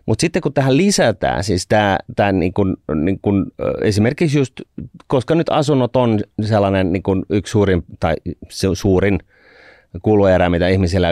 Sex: male